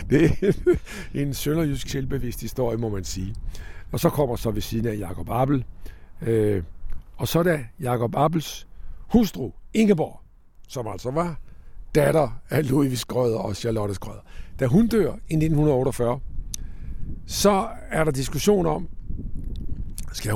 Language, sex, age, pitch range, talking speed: Danish, male, 60-79, 95-145 Hz, 140 wpm